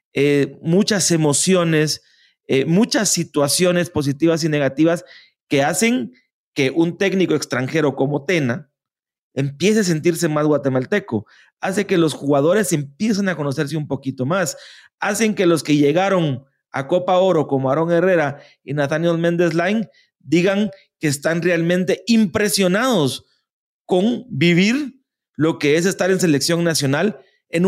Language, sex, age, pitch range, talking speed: English, male, 30-49, 145-195 Hz, 135 wpm